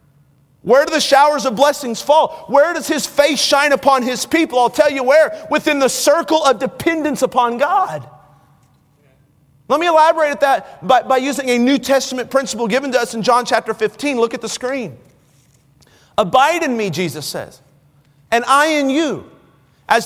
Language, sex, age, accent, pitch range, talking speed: English, male, 30-49, American, 215-295 Hz, 175 wpm